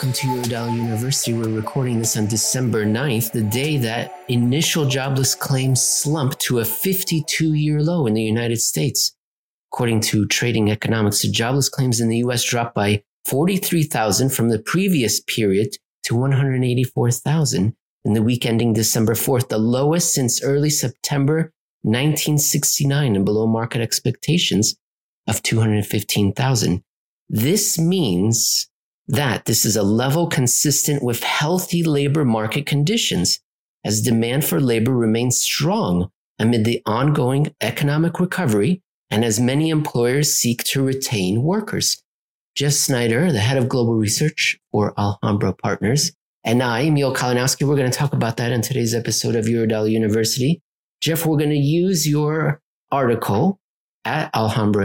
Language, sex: English, male